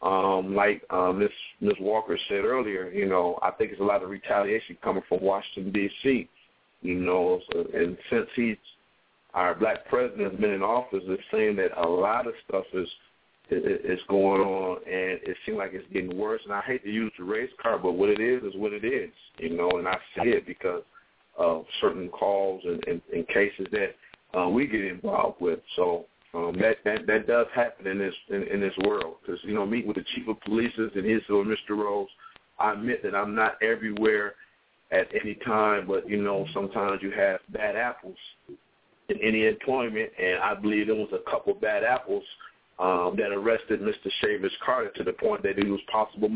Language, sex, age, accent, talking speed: English, male, 50-69, American, 205 wpm